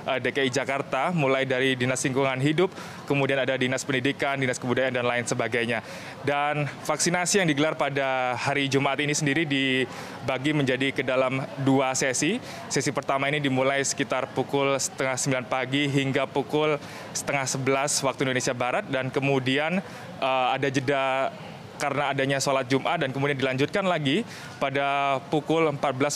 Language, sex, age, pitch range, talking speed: Indonesian, male, 20-39, 135-155 Hz, 145 wpm